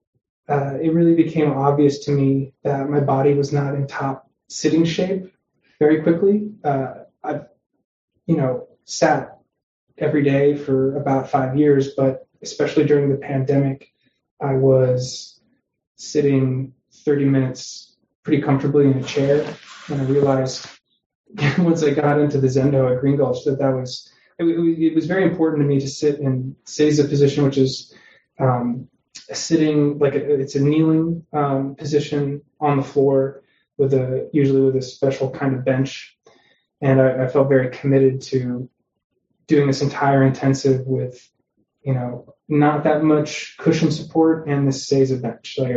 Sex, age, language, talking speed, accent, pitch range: male, 20-39, English, 155 wpm, American, 130-145 Hz